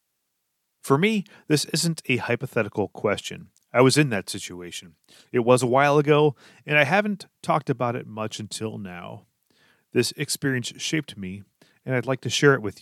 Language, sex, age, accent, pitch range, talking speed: English, male, 30-49, American, 100-135 Hz, 175 wpm